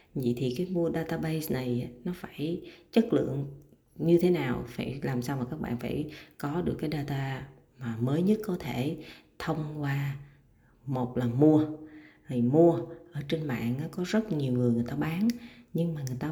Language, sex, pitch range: Vietnamese, female, 125-175 Hz